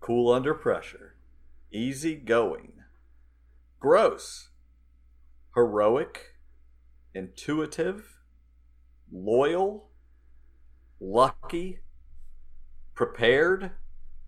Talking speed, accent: 45 wpm, American